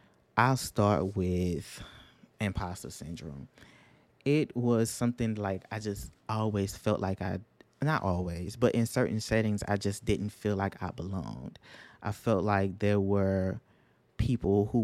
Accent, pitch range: American, 95-110 Hz